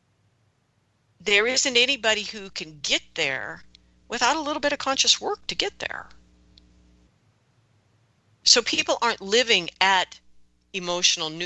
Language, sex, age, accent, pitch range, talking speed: English, female, 50-69, American, 145-220 Hz, 120 wpm